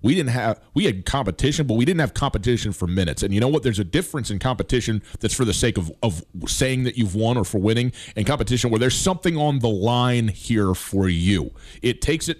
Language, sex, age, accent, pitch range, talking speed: English, male, 30-49, American, 110-155 Hz, 235 wpm